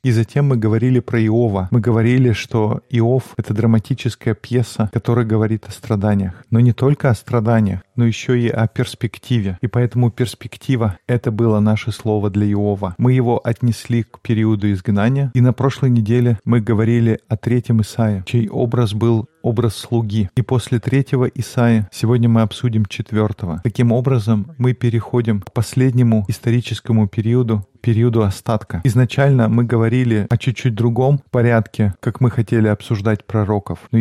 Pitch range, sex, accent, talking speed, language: 110-125 Hz, male, native, 155 wpm, Russian